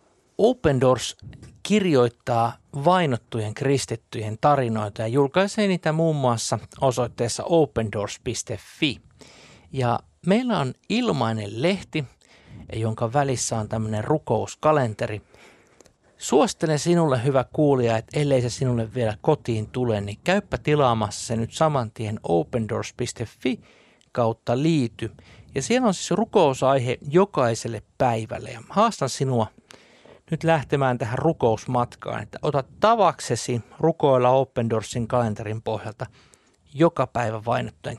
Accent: native